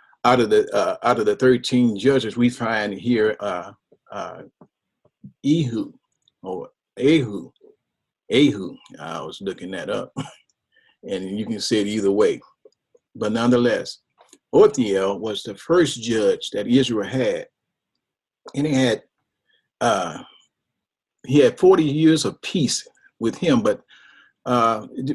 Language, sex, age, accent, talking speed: English, male, 40-59, American, 130 wpm